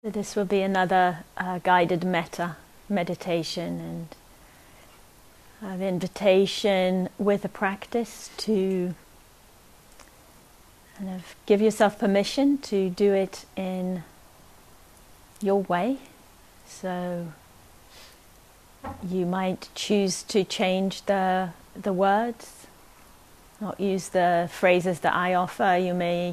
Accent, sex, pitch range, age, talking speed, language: British, female, 165-195 Hz, 30-49, 100 wpm, English